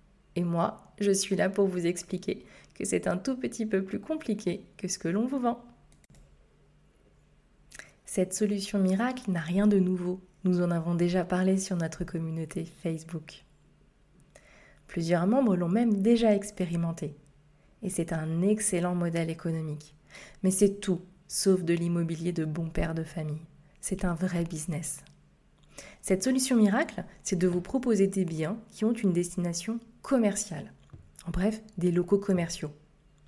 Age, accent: 20-39, French